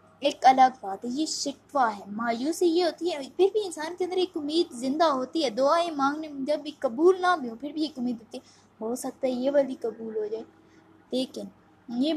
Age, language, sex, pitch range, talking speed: 20-39, Urdu, female, 230-305 Hz, 215 wpm